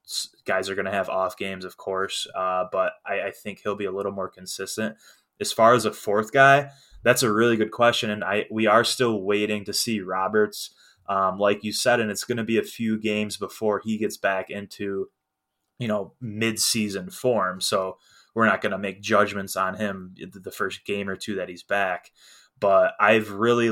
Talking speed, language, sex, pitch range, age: 205 wpm, English, male, 100-115 Hz, 20-39